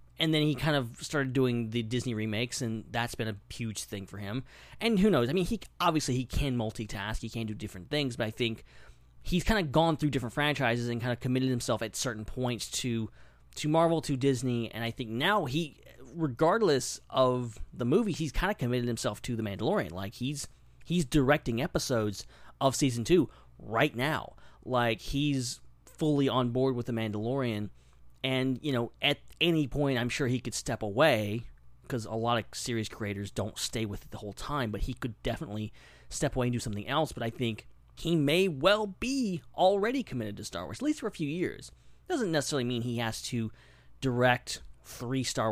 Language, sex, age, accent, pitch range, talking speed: English, male, 30-49, American, 110-145 Hz, 200 wpm